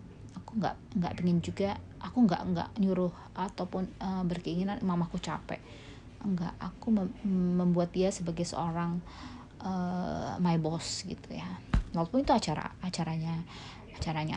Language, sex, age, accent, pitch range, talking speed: Indonesian, female, 20-39, native, 150-190 Hz, 115 wpm